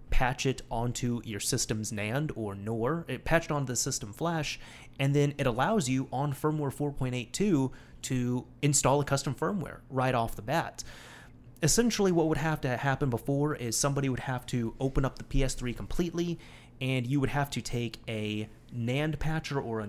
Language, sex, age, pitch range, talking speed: English, male, 30-49, 115-145 Hz, 180 wpm